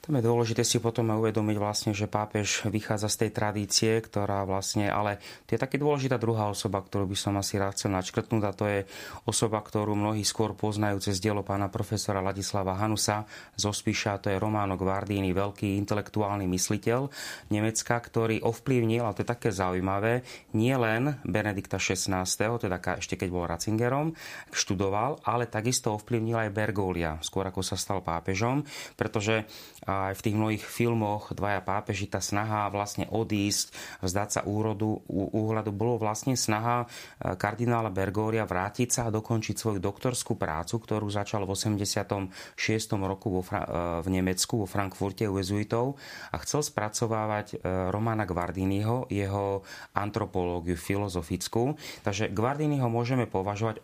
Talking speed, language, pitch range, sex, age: 145 wpm, Slovak, 100-115 Hz, male, 30-49